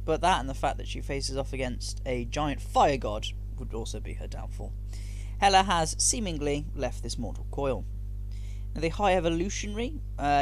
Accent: British